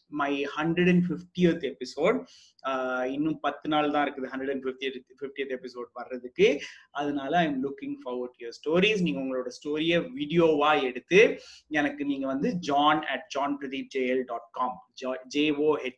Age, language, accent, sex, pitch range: 30-49, Tamil, native, male, 140-195 Hz